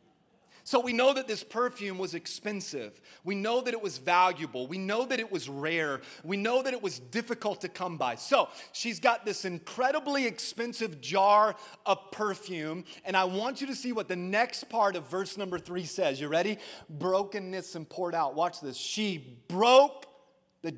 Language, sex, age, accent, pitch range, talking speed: English, male, 30-49, American, 180-230 Hz, 185 wpm